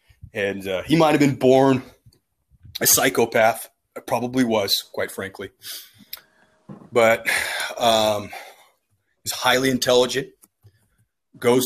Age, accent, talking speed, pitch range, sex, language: 30-49, American, 100 wpm, 110-125 Hz, male, English